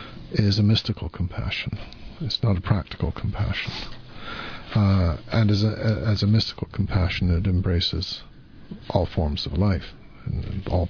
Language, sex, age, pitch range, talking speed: English, male, 60-79, 90-110 Hz, 145 wpm